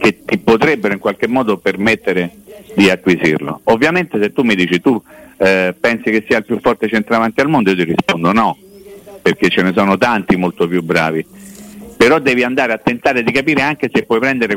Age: 50-69